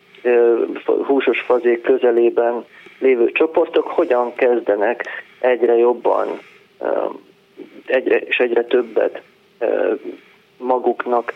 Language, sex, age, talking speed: Hungarian, male, 30-49, 75 wpm